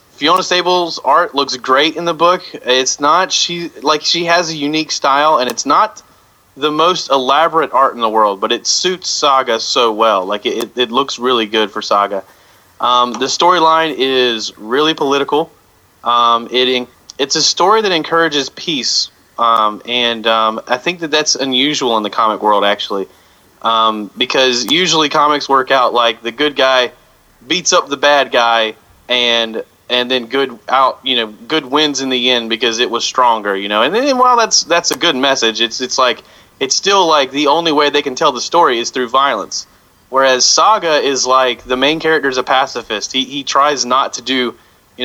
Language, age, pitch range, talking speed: English, 30-49, 120-155 Hz, 190 wpm